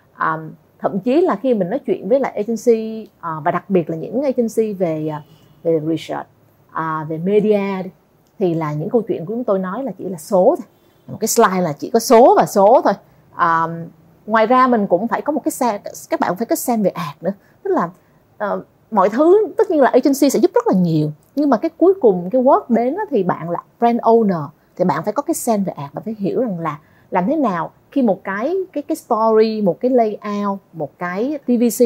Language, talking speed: Vietnamese, 230 wpm